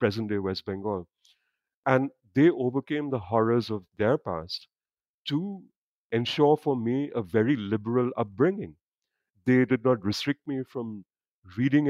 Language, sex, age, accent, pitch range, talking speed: English, male, 50-69, Indian, 110-135 Hz, 130 wpm